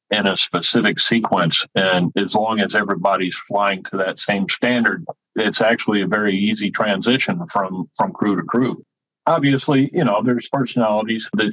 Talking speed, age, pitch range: 160 wpm, 50-69, 95-115 Hz